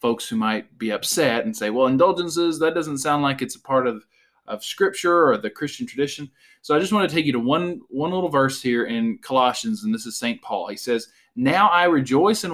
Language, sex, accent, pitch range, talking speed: English, male, American, 120-175 Hz, 235 wpm